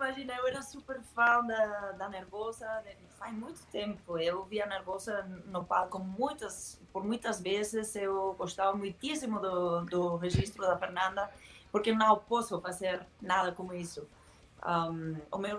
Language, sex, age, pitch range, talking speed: Portuguese, female, 20-39, 180-210 Hz, 145 wpm